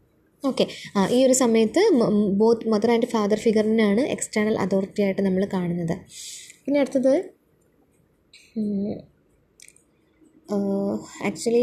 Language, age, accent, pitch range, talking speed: Malayalam, 20-39, native, 200-245 Hz, 95 wpm